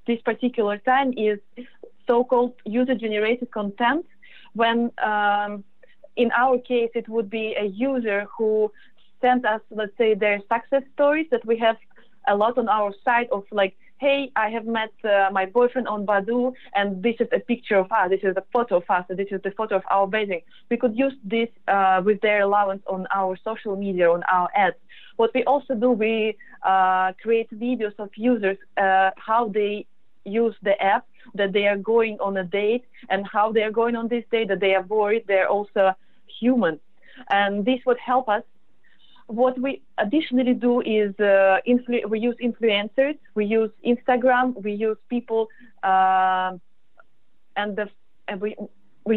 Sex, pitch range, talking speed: female, 200-240 Hz, 170 wpm